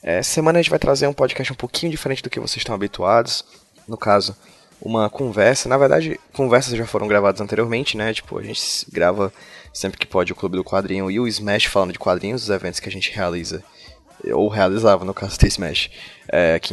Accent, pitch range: Brazilian, 95-125 Hz